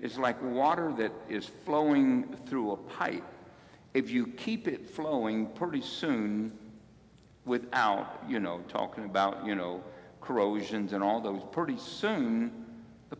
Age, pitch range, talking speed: 60-79, 100-160 Hz, 135 wpm